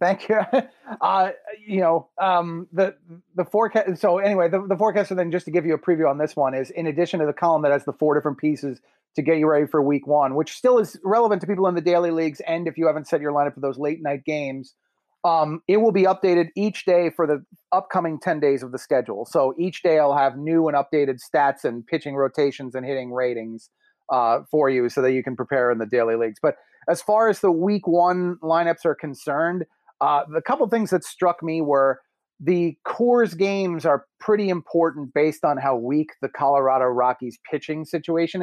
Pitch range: 140-180 Hz